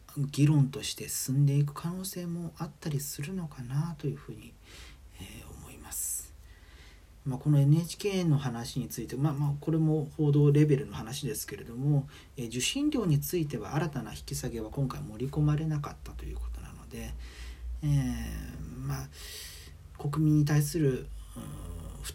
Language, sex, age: Japanese, male, 40-59